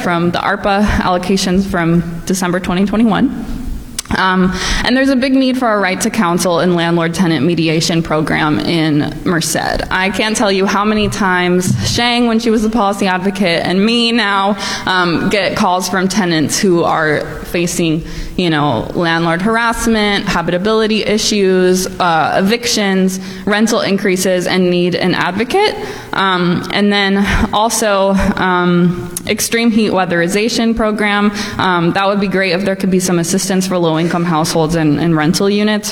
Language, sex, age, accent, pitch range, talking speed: English, female, 20-39, American, 170-210 Hz, 150 wpm